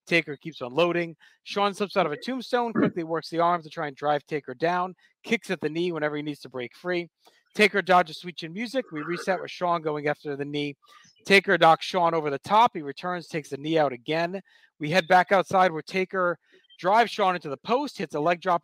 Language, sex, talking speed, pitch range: English, male, 230 wpm, 155-190 Hz